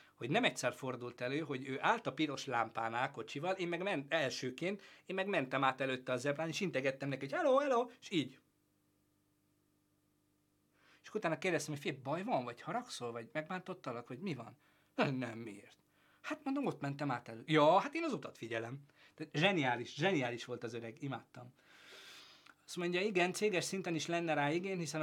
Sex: male